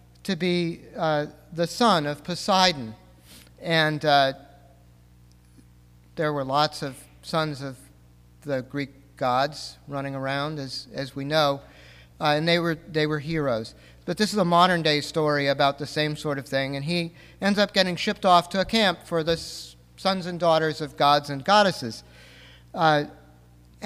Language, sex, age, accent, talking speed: English, male, 50-69, American, 160 wpm